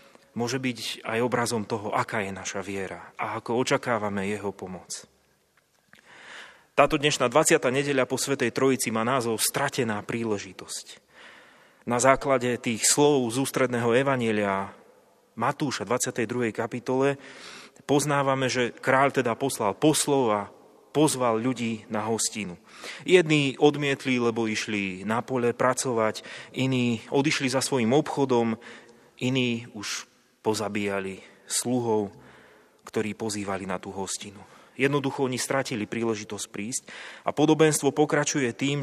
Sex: male